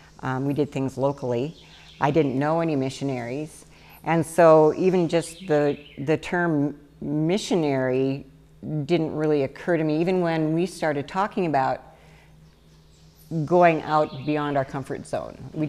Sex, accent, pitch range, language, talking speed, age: female, American, 140-170 Hz, English, 140 wpm, 50-69